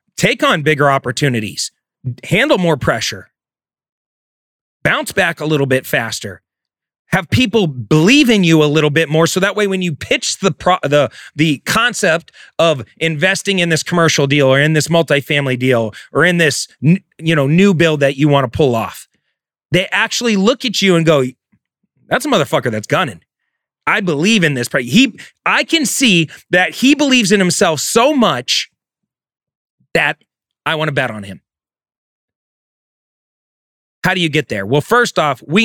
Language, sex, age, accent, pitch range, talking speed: English, male, 30-49, American, 145-200 Hz, 165 wpm